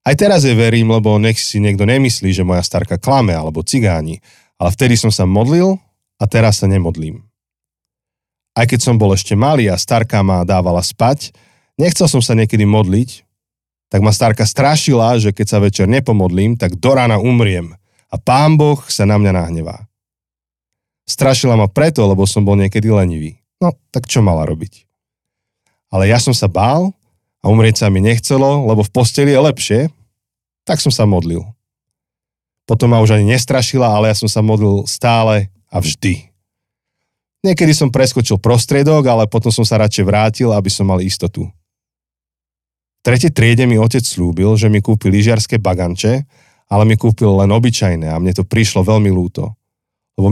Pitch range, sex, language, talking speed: 95-125 Hz, male, Slovak, 170 wpm